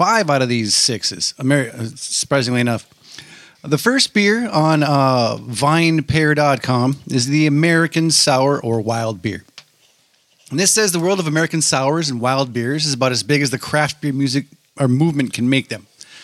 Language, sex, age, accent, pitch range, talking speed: English, male, 30-49, American, 130-160 Hz, 165 wpm